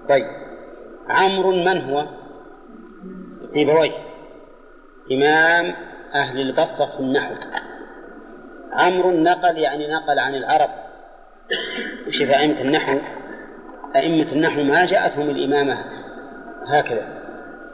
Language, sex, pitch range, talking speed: Arabic, male, 140-160 Hz, 85 wpm